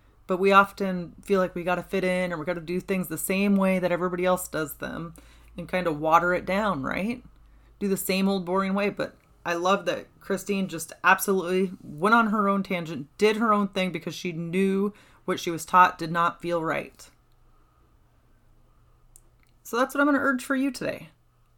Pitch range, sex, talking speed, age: 185-235 Hz, female, 205 wpm, 30-49